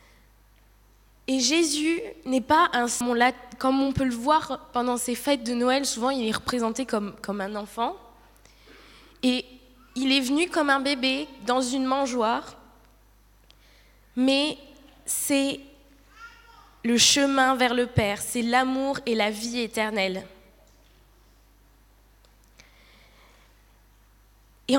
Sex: female